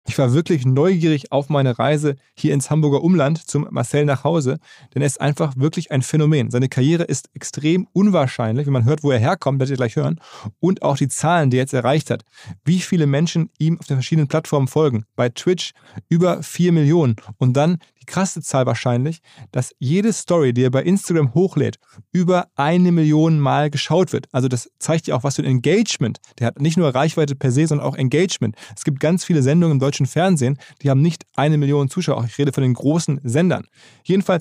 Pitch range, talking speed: 130-165 Hz, 210 wpm